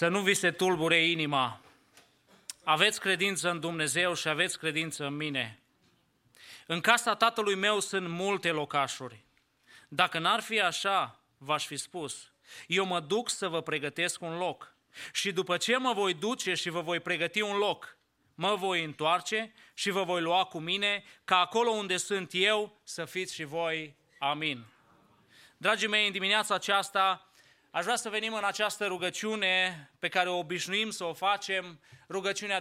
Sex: male